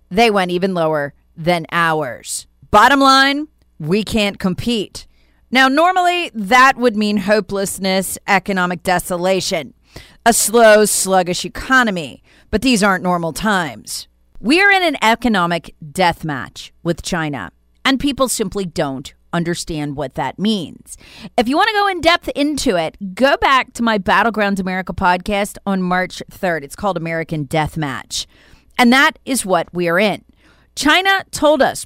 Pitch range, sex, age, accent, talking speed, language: 175-240 Hz, female, 40-59, American, 145 wpm, English